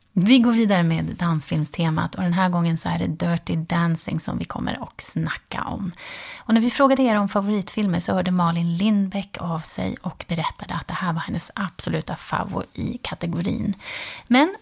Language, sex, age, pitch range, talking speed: Swedish, female, 30-49, 170-225 Hz, 180 wpm